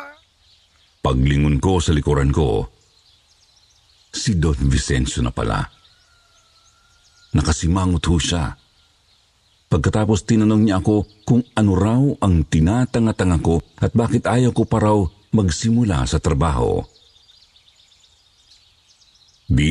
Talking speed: 100 wpm